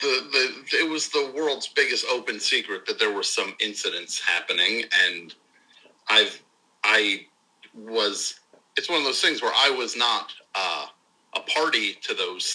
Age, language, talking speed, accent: 40-59, English, 155 wpm, American